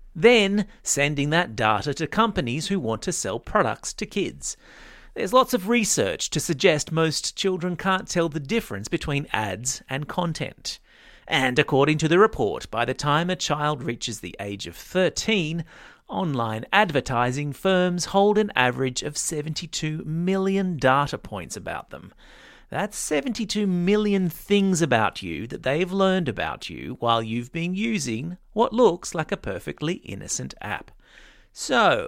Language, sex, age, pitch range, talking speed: English, male, 40-59, 130-190 Hz, 150 wpm